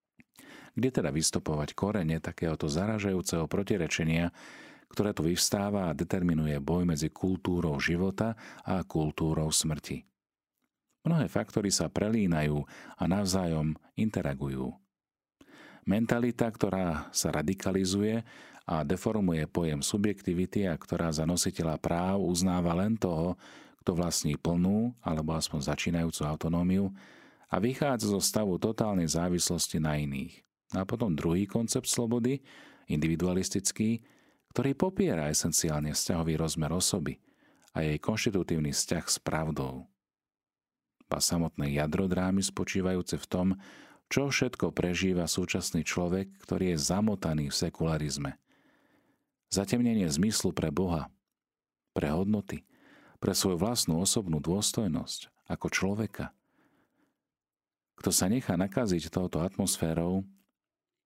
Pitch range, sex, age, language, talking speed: 80-100 Hz, male, 40-59, Slovak, 110 wpm